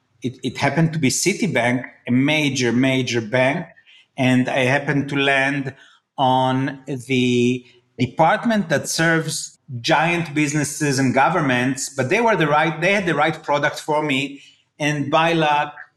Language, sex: English, male